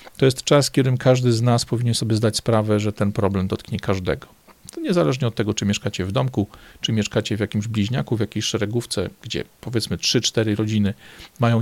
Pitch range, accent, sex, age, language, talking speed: 105-125 Hz, native, male, 40-59, Polish, 195 wpm